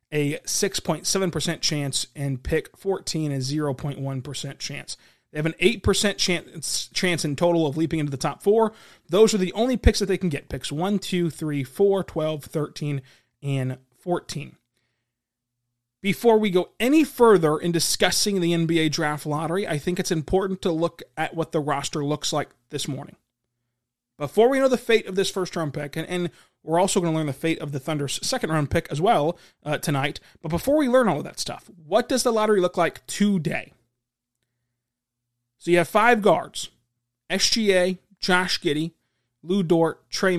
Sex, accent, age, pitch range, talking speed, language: male, American, 30-49, 135-185 Hz, 175 wpm, English